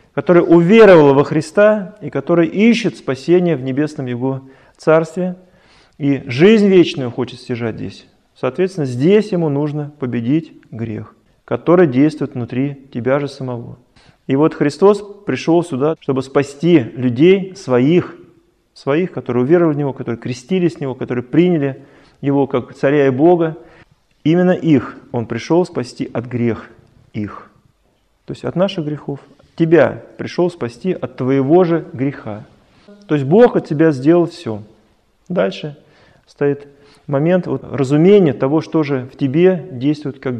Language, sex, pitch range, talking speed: Russian, male, 130-170 Hz, 140 wpm